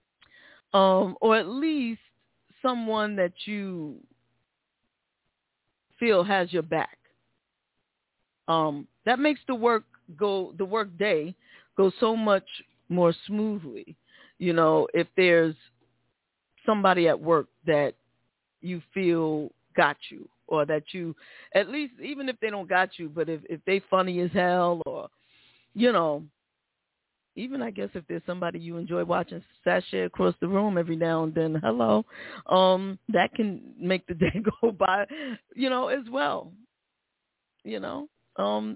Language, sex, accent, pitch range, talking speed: English, female, American, 165-220 Hz, 140 wpm